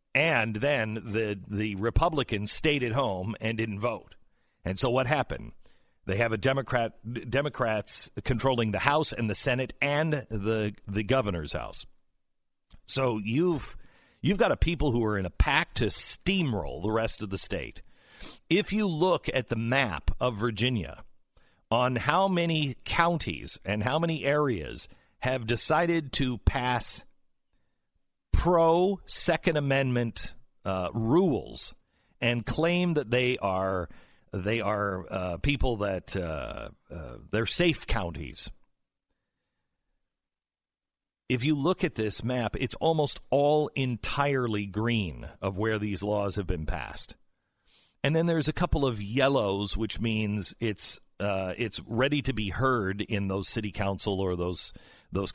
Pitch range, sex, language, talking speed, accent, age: 100-135 Hz, male, English, 140 wpm, American, 50-69